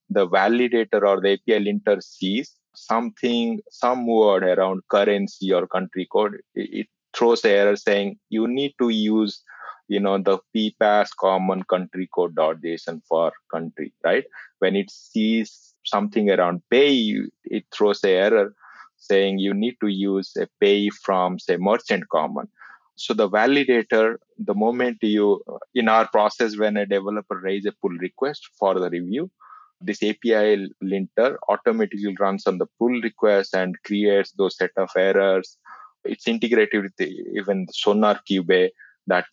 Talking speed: 150 wpm